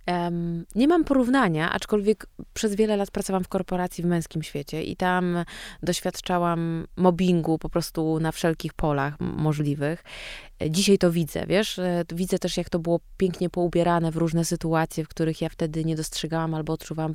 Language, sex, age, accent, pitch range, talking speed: Polish, female, 20-39, native, 155-180 Hz, 155 wpm